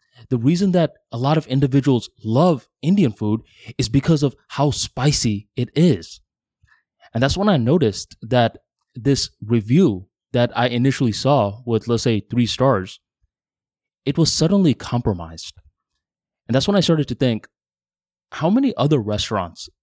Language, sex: English, male